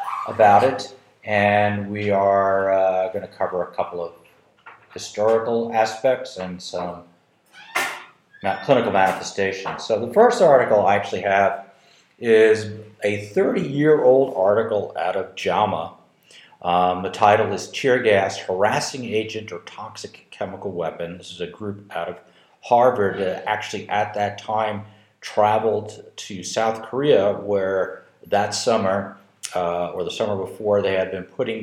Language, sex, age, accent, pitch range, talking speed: English, male, 50-69, American, 95-110 Hz, 135 wpm